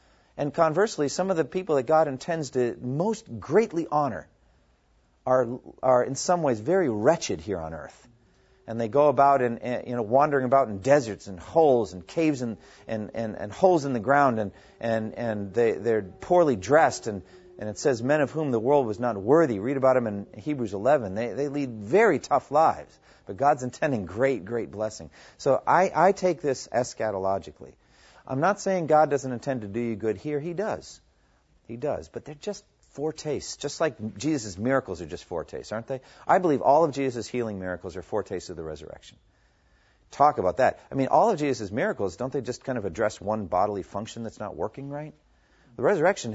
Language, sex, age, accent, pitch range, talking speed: English, male, 40-59, American, 105-150 Hz, 200 wpm